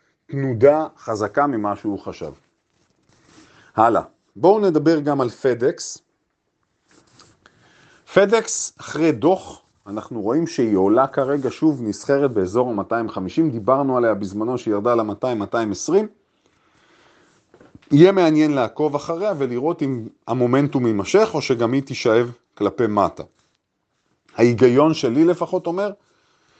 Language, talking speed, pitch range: Hebrew, 105 wpm, 115-160 Hz